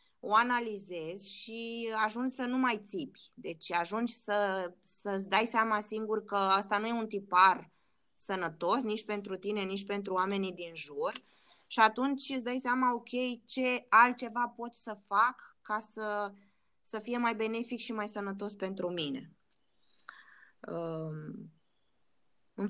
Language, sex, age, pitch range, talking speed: Romanian, female, 20-39, 185-230 Hz, 140 wpm